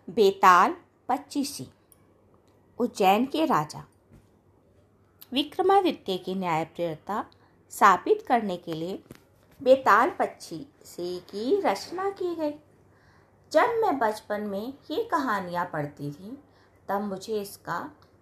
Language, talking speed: Hindi, 100 wpm